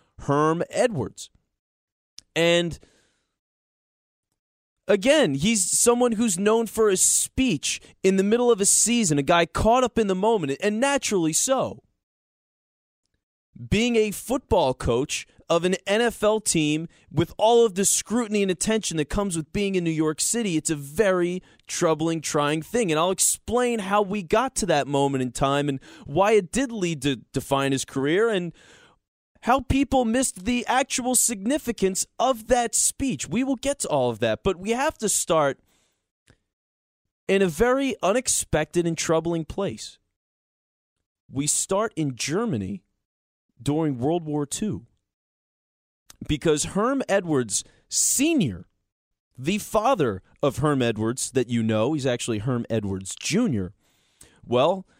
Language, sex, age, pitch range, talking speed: English, male, 20-39, 140-220 Hz, 145 wpm